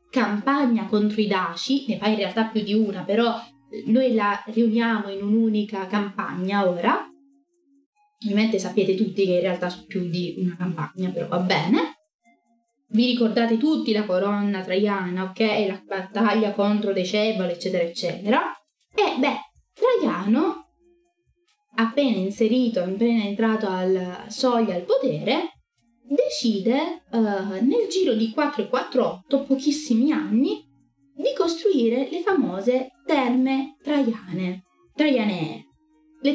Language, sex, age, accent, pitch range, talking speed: Italian, female, 20-39, native, 195-270 Hz, 125 wpm